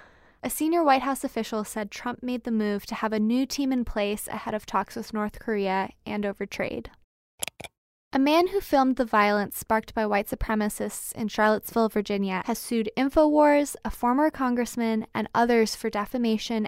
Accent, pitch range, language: American, 215-255 Hz, English